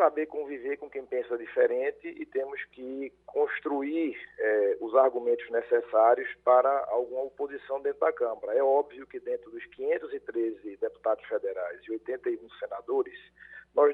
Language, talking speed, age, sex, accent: Portuguese, 140 wpm, 50-69, male, Brazilian